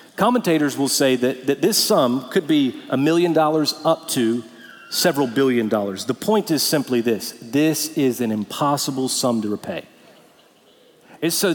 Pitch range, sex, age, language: 135-210 Hz, male, 40-59, English